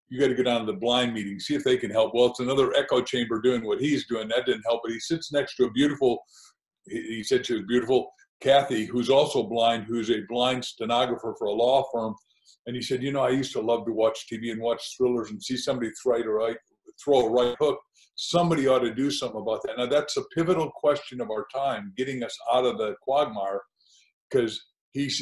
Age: 50-69